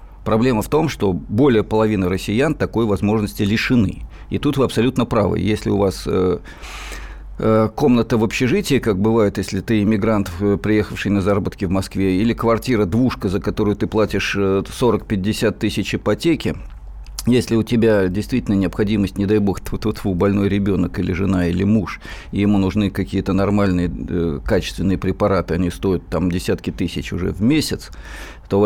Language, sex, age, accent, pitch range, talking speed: Russian, male, 50-69, native, 95-110 Hz, 150 wpm